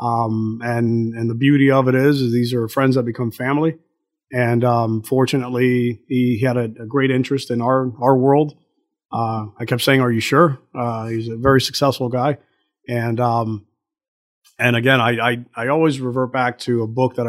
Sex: male